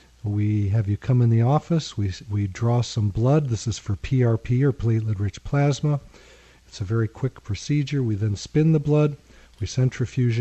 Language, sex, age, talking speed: English, male, 40-59, 180 wpm